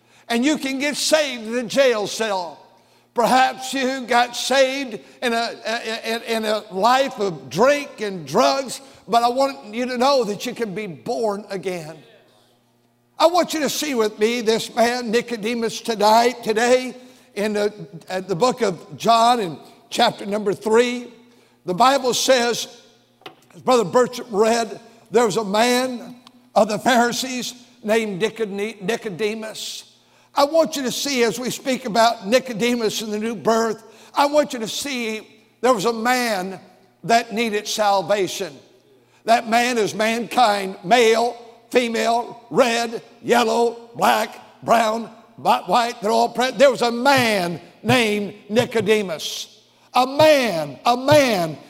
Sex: male